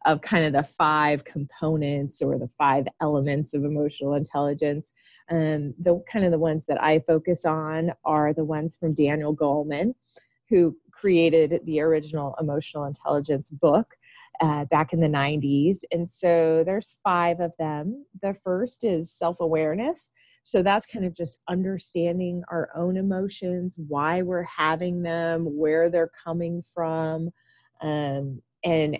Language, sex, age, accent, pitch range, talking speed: English, female, 30-49, American, 155-180 Hz, 145 wpm